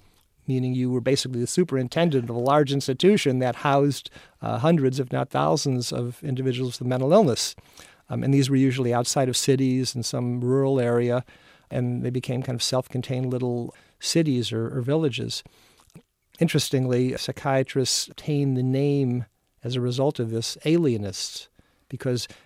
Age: 50-69